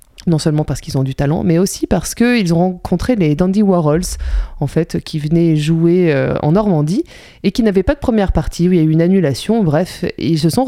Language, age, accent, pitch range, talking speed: French, 20-39, French, 160-205 Hz, 230 wpm